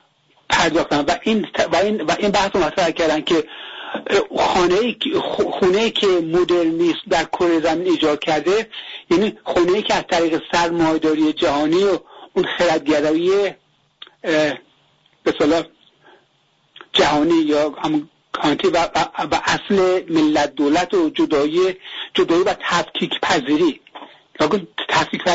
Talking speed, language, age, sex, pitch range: 110 wpm, English, 60-79, male, 160-235 Hz